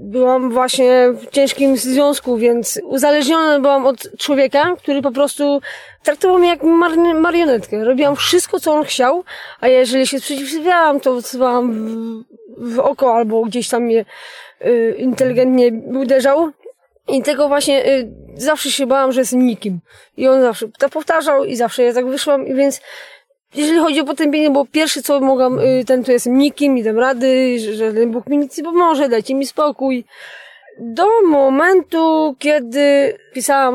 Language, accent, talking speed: Polish, native, 155 wpm